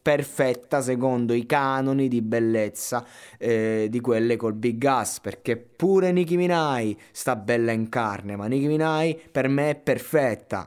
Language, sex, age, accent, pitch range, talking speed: Italian, male, 20-39, native, 105-135 Hz, 150 wpm